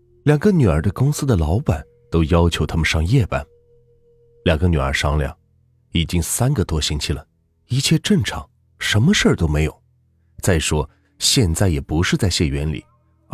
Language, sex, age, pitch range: Chinese, male, 30-49, 80-120 Hz